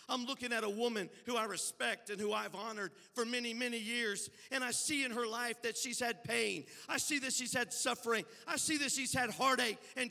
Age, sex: 50-69, male